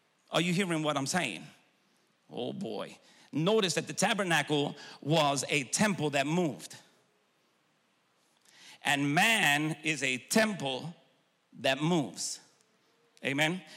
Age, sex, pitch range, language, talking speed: 50-69, male, 150-185 Hz, English, 110 wpm